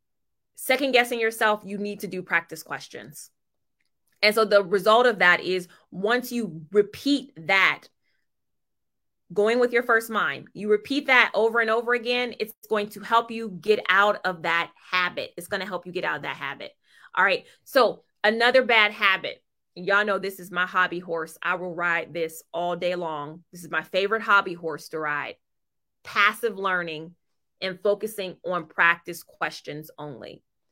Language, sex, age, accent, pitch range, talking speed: English, female, 20-39, American, 175-215 Hz, 170 wpm